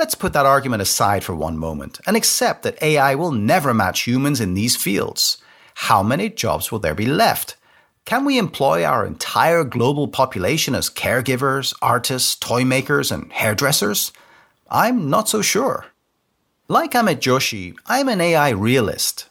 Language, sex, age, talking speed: English, male, 40-59, 160 wpm